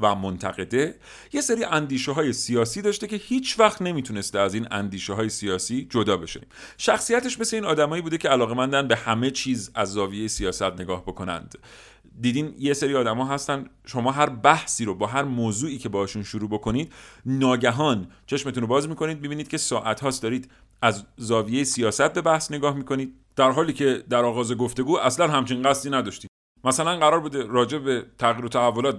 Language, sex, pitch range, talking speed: Persian, male, 110-155 Hz, 175 wpm